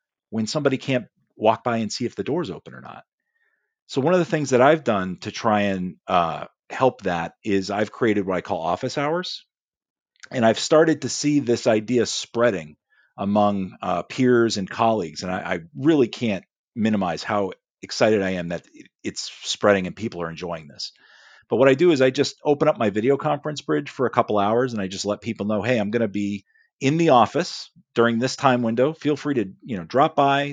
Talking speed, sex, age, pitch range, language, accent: 210 wpm, male, 40-59, 105-140 Hz, English, American